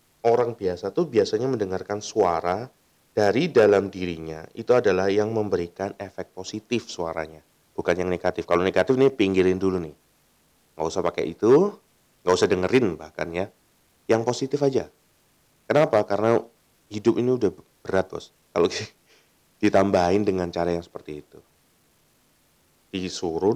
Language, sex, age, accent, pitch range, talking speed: Indonesian, male, 30-49, native, 90-115 Hz, 130 wpm